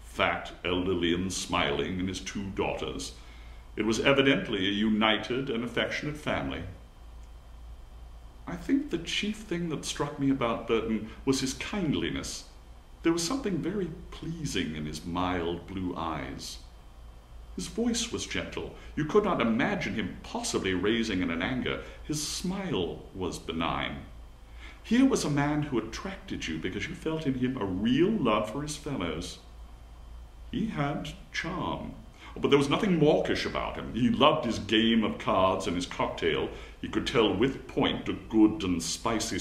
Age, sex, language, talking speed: 60-79, male, English, 155 wpm